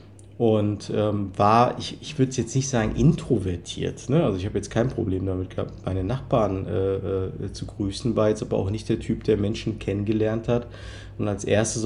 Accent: German